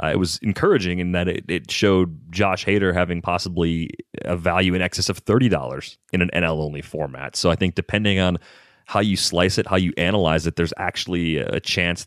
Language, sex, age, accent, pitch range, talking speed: English, male, 30-49, American, 85-95 Hz, 200 wpm